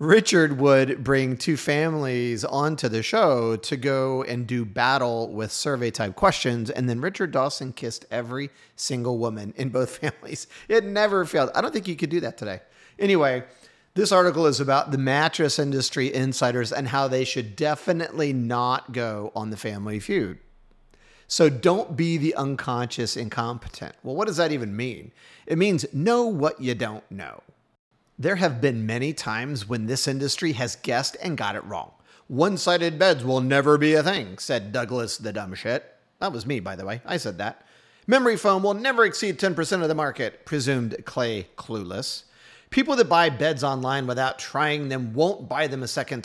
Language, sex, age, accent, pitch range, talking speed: English, male, 40-59, American, 120-160 Hz, 180 wpm